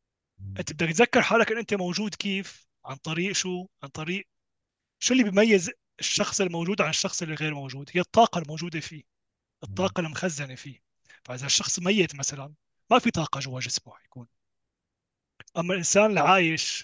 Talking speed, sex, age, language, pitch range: 155 wpm, male, 30-49, Arabic, 150-195 Hz